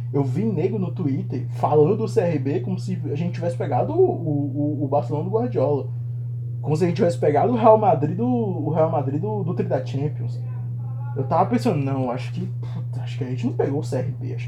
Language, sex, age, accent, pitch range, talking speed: Portuguese, male, 20-39, Brazilian, 120-130 Hz, 220 wpm